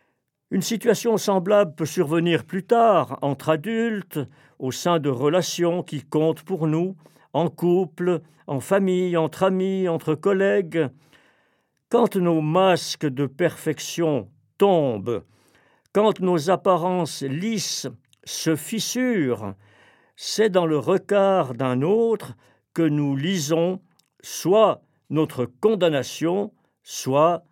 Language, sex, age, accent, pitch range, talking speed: French, male, 50-69, French, 145-190 Hz, 110 wpm